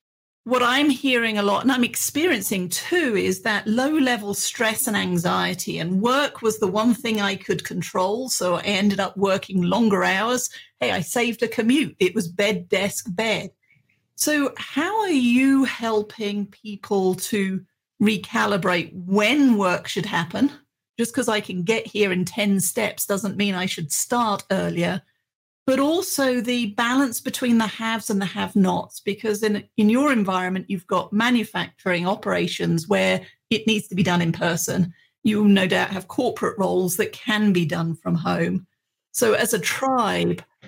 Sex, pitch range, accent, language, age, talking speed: female, 190-235 Hz, British, English, 40-59, 165 wpm